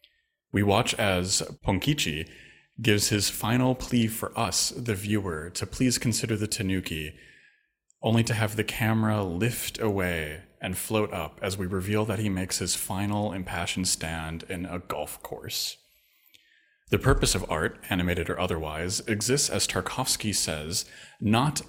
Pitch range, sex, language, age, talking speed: 90-115 Hz, male, English, 30-49, 145 wpm